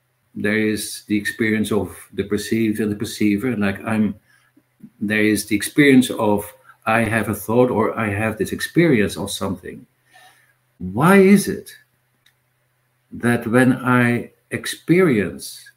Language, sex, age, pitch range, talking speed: English, male, 60-79, 120-145 Hz, 135 wpm